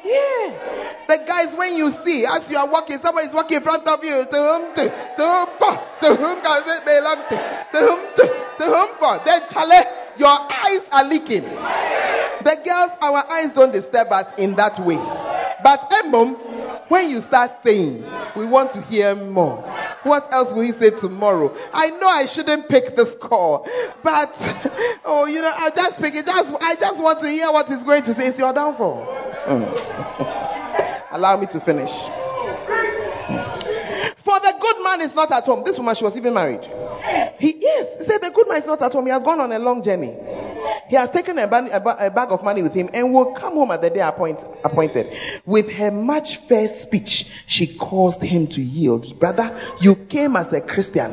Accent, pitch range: Nigerian, 230-330 Hz